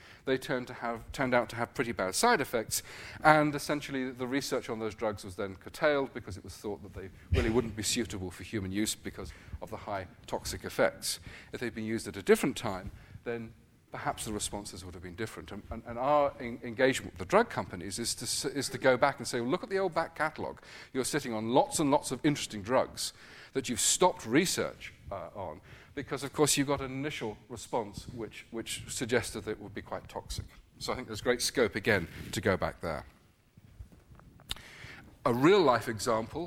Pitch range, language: 105-135 Hz, English